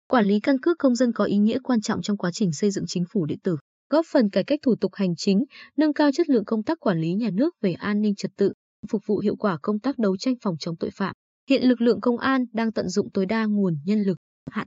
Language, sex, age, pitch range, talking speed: Vietnamese, female, 20-39, 195-245 Hz, 280 wpm